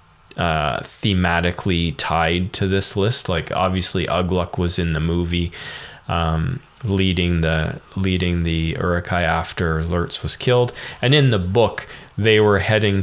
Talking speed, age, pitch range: 140 wpm, 20-39, 85-95 Hz